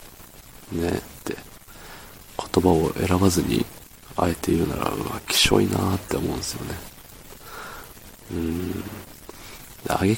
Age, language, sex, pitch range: 40-59, Japanese, male, 90-105 Hz